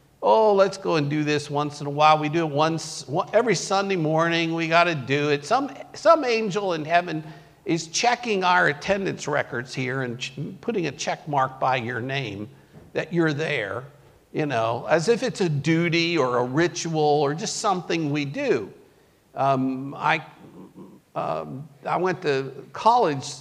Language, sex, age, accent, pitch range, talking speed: English, male, 50-69, American, 140-200 Hz, 175 wpm